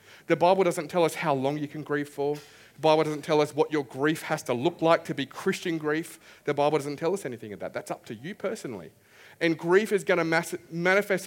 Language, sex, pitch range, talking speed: English, male, 145-185 Hz, 245 wpm